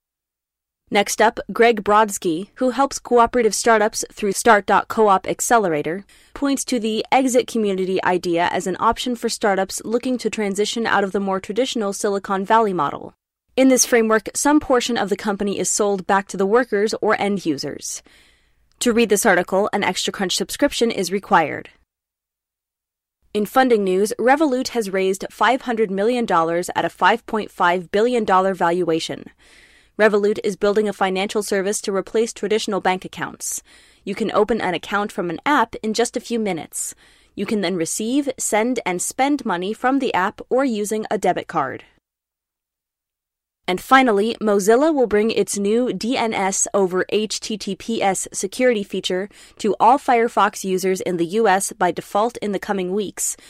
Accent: American